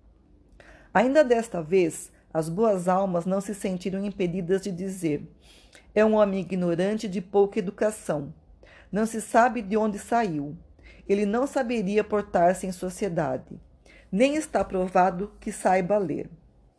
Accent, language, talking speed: Brazilian, Portuguese, 130 wpm